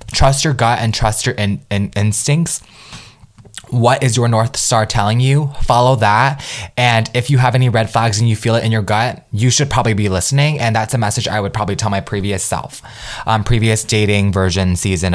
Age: 20-39